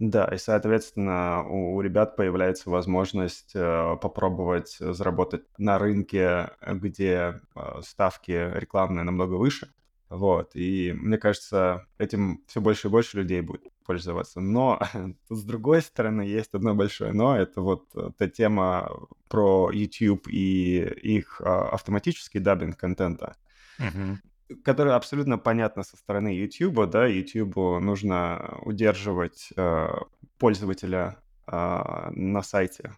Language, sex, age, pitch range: Russian, male, 20-39, 95-110 Hz